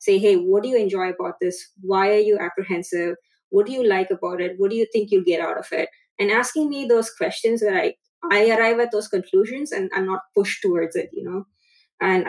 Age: 20-39